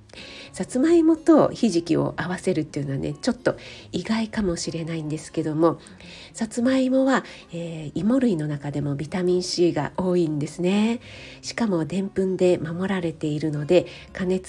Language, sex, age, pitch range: Japanese, female, 50-69, 165-220 Hz